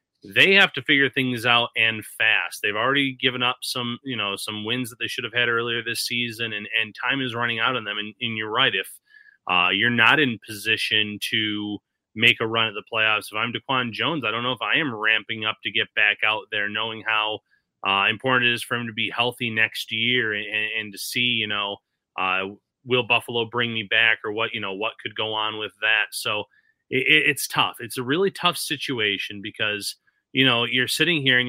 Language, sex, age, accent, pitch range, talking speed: English, male, 30-49, American, 110-135 Hz, 225 wpm